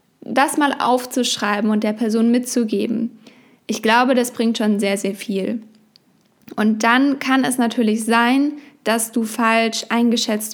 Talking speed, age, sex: 140 wpm, 10-29, female